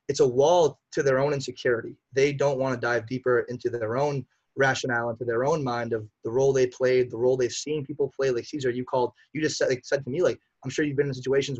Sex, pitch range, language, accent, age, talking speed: male, 125-150 Hz, English, American, 20-39, 255 wpm